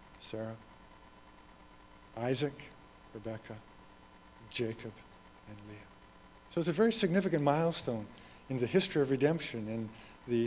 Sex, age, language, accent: male, 50-69, English, American